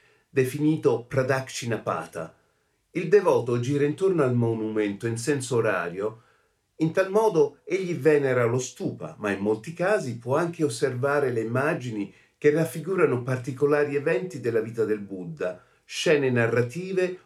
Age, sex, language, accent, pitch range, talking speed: 50-69, male, Italian, native, 120-160 Hz, 130 wpm